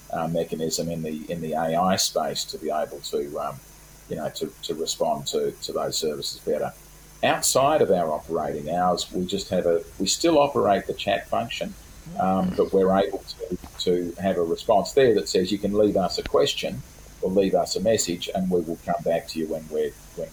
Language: English